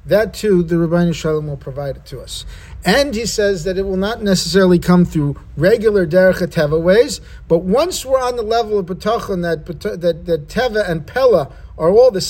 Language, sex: English, male